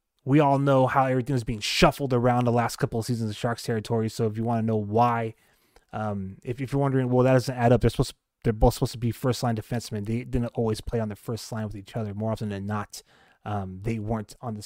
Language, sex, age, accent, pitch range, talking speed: English, male, 20-39, American, 110-135 Hz, 265 wpm